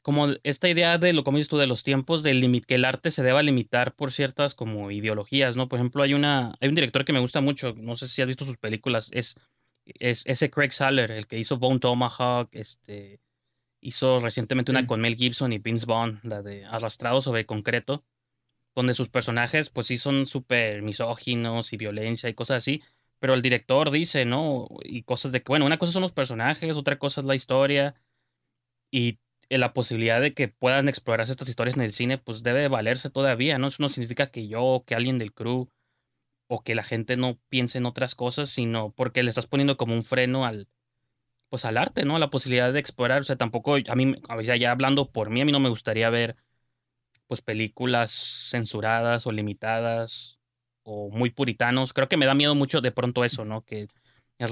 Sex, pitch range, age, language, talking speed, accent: male, 120-135 Hz, 20-39, Spanish, 210 wpm, Mexican